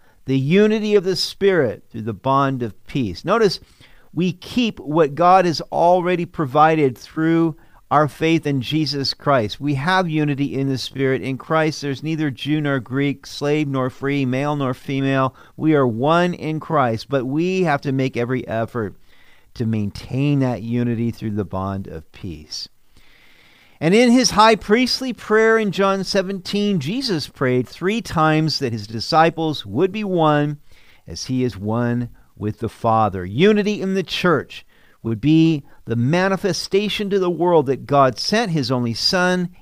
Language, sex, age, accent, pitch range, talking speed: English, male, 50-69, American, 120-170 Hz, 160 wpm